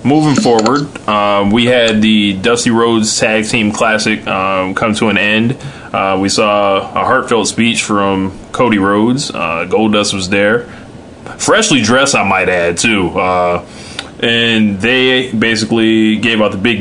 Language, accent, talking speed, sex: English, American, 155 wpm, male